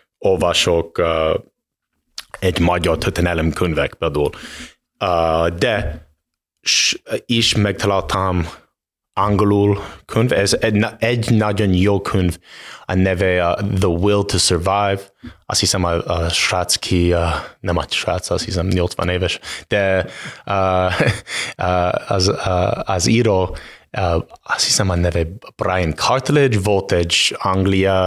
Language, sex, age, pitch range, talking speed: Hungarian, male, 20-39, 90-100 Hz, 95 wpm